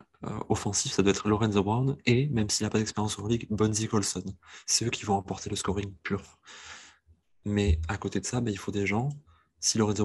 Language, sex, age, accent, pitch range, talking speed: French, male, 20-39, French, 95-110 Hz, 215 wpm